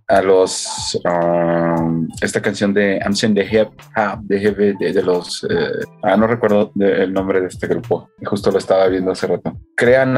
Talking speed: 155 wpm